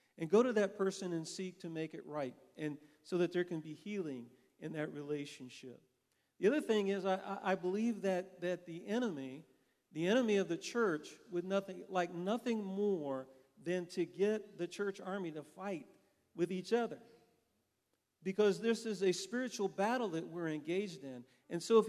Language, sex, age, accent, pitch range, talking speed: English, male, 50-69, American, 170-210 Hz, 180 wpm